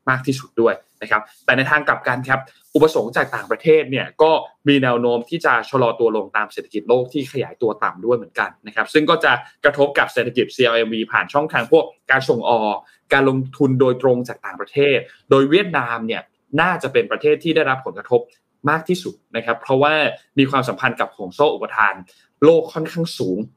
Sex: male